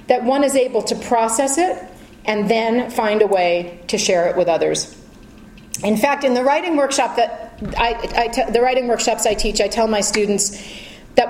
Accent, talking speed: American, 195 wpm